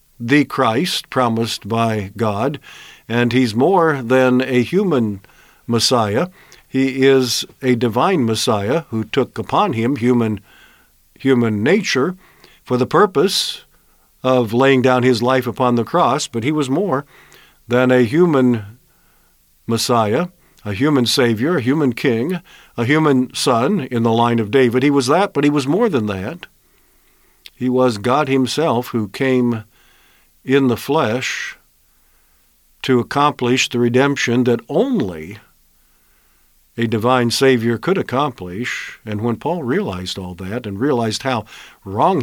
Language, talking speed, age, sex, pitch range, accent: English, 135 wpm, 50-69, male, 115-140 Hz, American